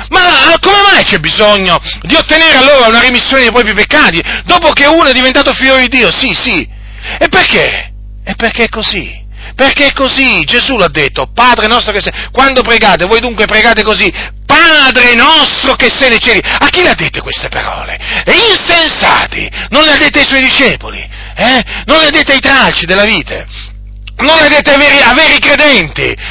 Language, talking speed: Italian, 190 wpm